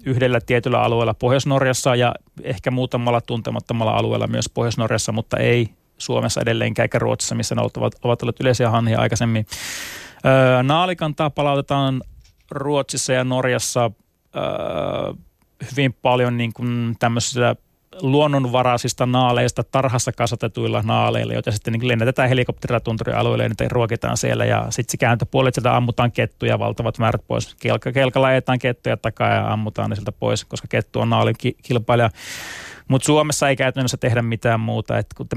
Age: 30-49